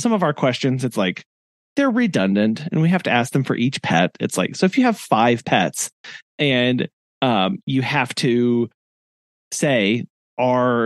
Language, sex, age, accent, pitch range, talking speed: English, male, 30-49, American, 140-205 Hz, 175 wpm